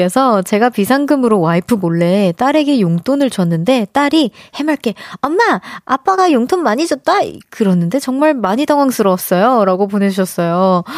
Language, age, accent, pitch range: Korean, 20-39, native, 190-275 Hz